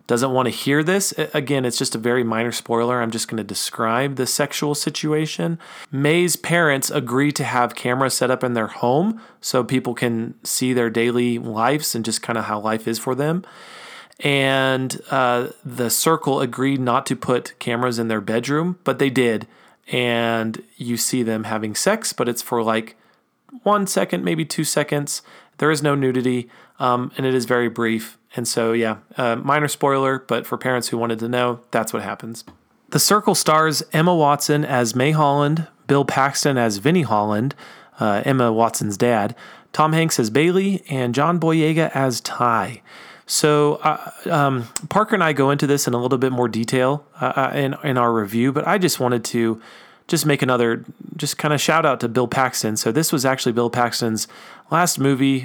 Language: English